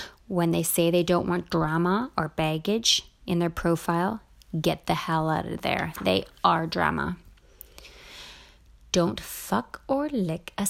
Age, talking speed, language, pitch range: 30-49, 145 wpm, English, 170-225 Hz